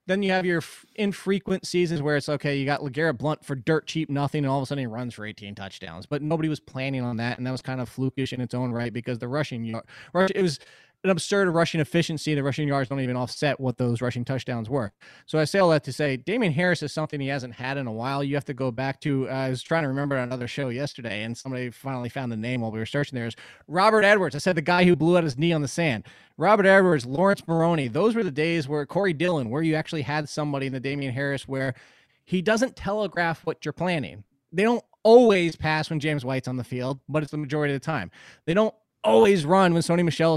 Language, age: English, 20-39